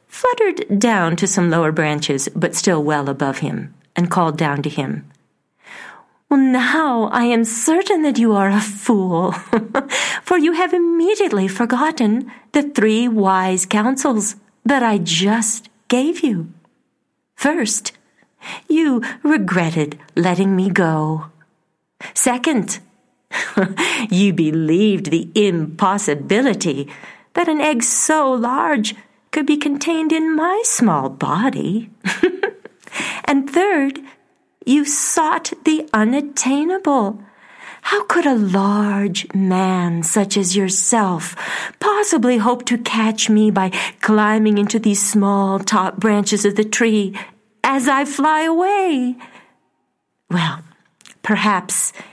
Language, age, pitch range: English, 40-59, 190-275 Hz